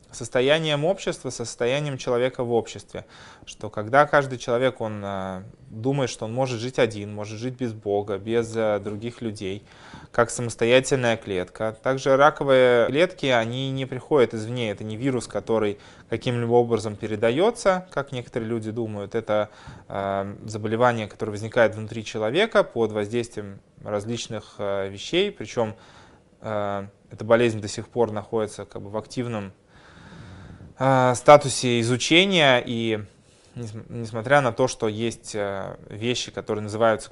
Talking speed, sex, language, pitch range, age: 130 wpm, male, Russian, 105-130 Hz, 20-39